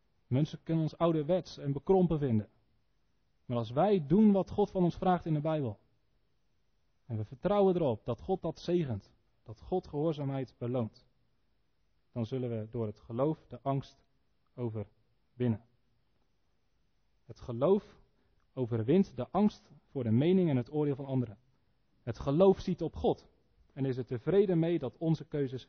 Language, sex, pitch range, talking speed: Dutch, male, 120-165 Hz, 155 wpm